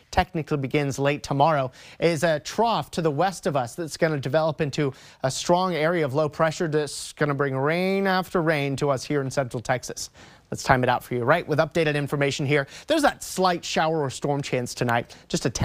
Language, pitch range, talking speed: English, 135-180 Hz, 220 wpm